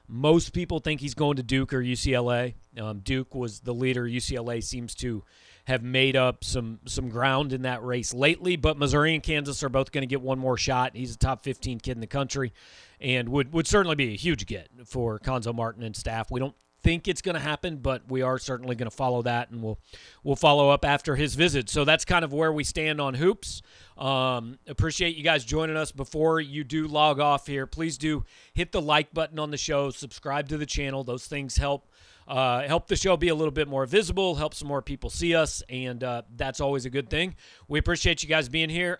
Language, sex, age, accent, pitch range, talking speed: English, male, 40-59, American, 125-155 Hz, 230 wpm